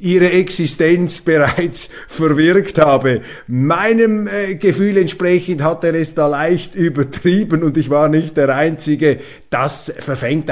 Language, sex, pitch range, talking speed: German, male, 145-180 Hz, 125 wpm